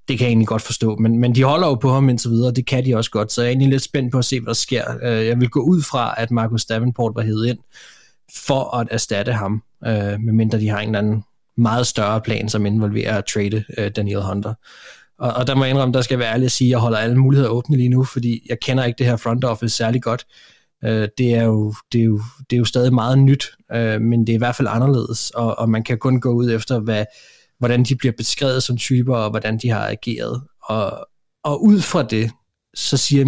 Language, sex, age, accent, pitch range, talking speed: Danish, male, 20-39, native, 110-125 Hz, 250 wpm